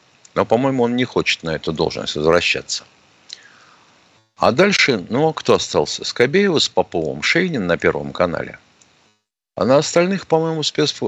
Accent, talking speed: native, 140 wpm